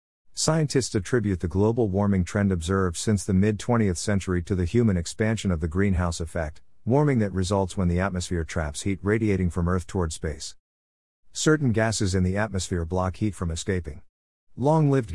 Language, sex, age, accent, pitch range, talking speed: English, male, 50-69, American, 85-115 Hz, 165 wpm